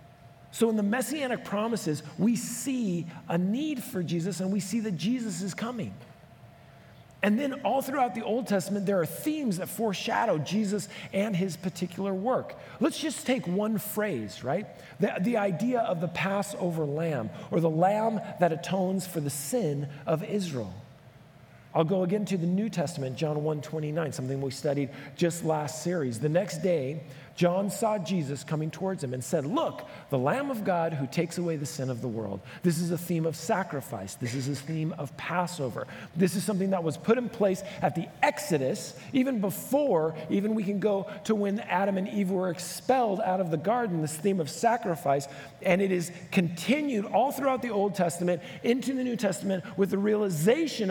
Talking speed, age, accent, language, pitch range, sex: 185 wpm, 40-59, American, English, 155-210 Hz, male